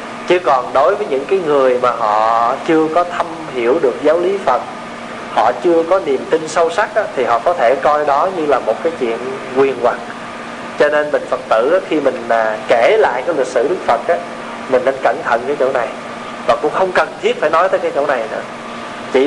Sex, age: male, 20-39